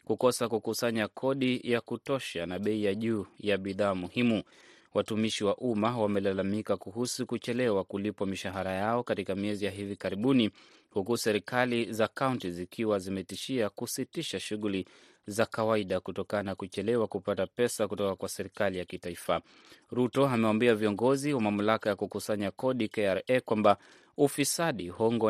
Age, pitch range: 30-49, 100-120 Hz